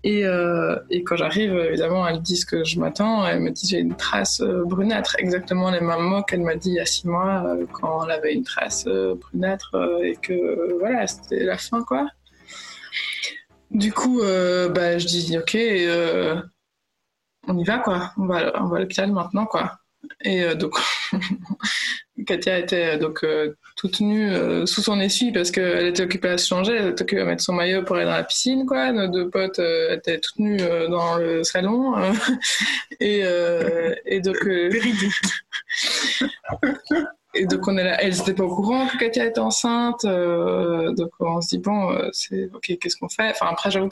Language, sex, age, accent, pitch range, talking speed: French, female, 20-39, French, 175-220 Hz, 190 wpm